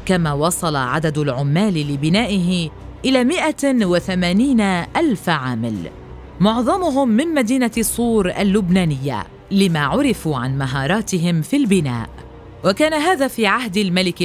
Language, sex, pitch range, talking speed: Arabic, female, 150-245 Hz, 105 wpm